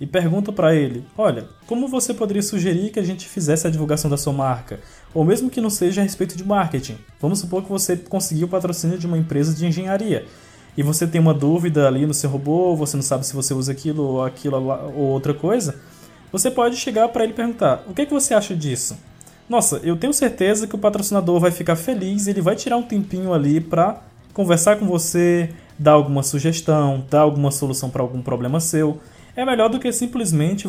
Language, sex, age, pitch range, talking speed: Portuguese, male, 20-39, 145-205 Hz, 210 wpm